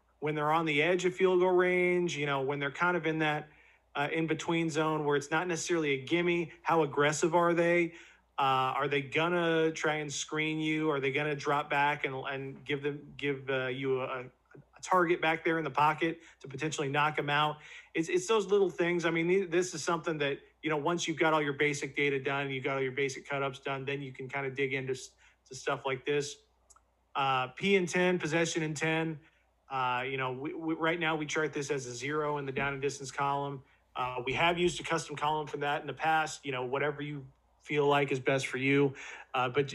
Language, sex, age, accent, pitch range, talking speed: English, male, 40-59, American, 140-165 Hz, 230 wpm